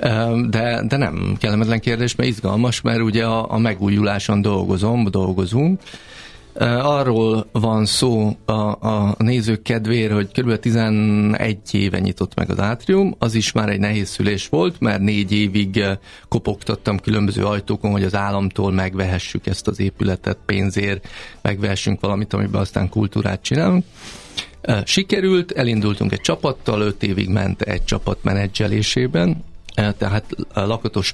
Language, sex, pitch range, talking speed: Hungarian, male, 100-115 Hz, 130 wpm